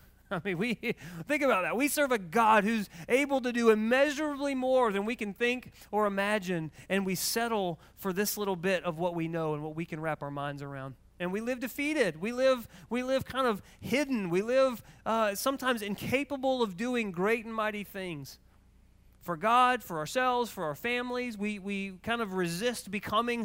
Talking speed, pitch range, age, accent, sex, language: 195 wpm, 150-210 Hz, 30-49, American, male, English